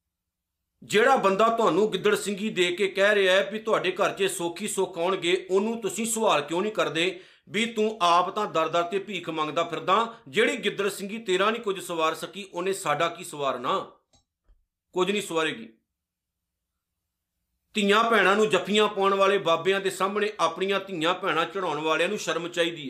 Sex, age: male, 50-69